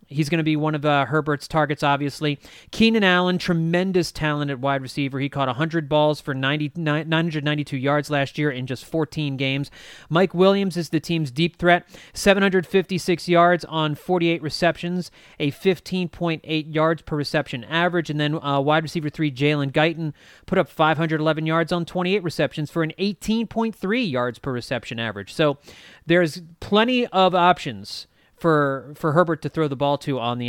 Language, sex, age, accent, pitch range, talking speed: English, male, 30-49, American, 145-185 Hz, 170 wpm